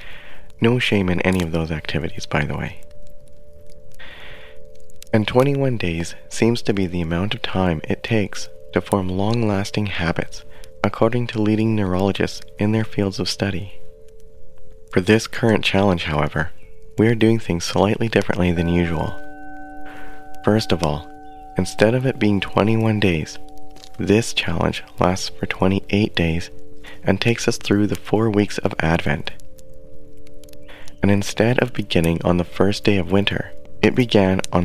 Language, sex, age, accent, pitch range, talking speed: English, male, 30-49, American, 80-110 Hz, 145 wpm